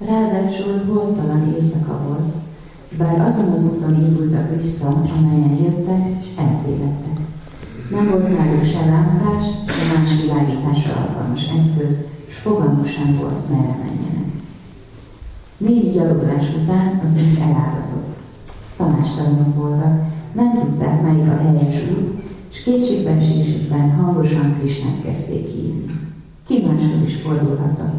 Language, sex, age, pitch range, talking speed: Hungarian, female, 40-59, 145-170 Hz, 105 wpm